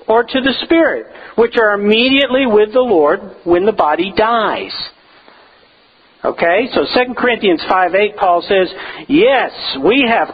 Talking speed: 145 wpm